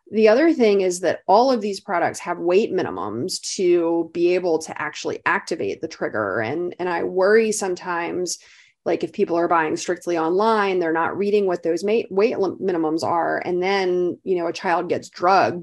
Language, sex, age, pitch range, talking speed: English, female, 30-49, 175-220 Hz, 185 wpm